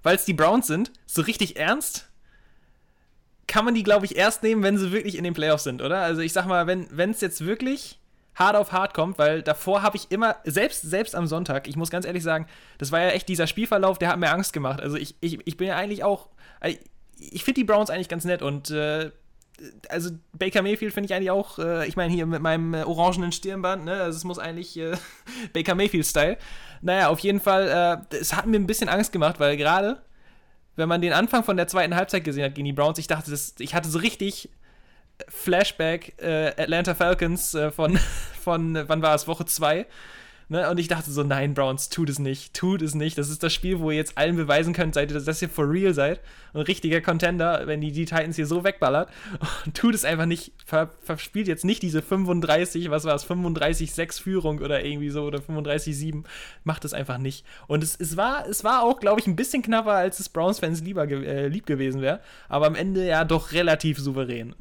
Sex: male